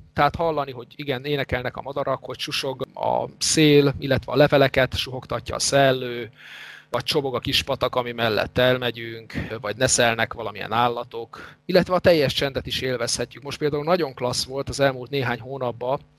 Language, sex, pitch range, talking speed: Hungarian, male, 120-140 Hz, 165 wpm